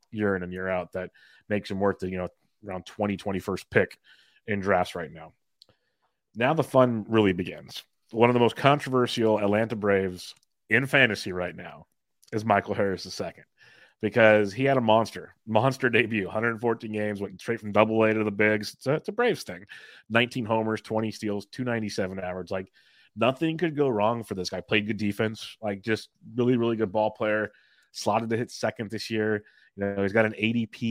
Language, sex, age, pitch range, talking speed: English, male, 30-49, 100-125 Hz, 195 wpm